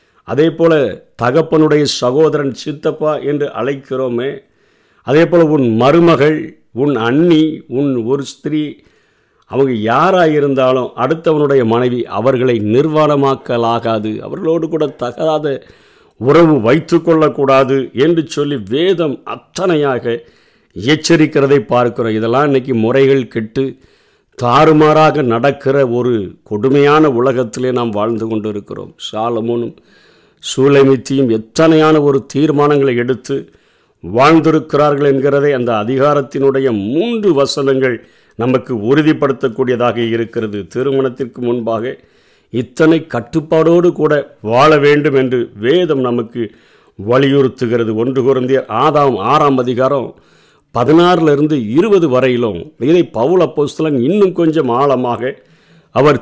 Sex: male